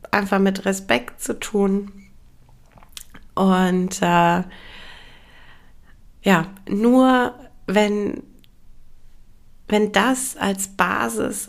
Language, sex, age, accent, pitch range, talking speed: German, female, 30-49, German, 175-210 Hz, 75 wpm